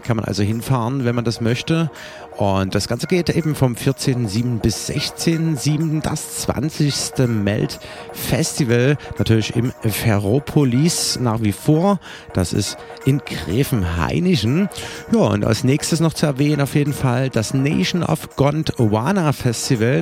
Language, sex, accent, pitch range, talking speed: German, male, German, 120-160 Hz, 130 wpm